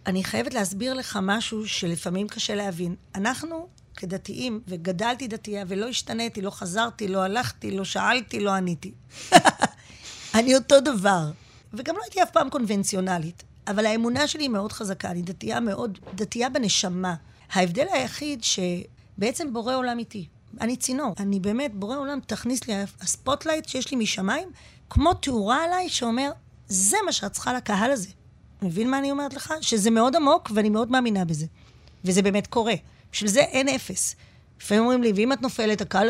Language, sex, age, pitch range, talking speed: Hebrew, female, 30-49, 195-255 Hz, 160 wpm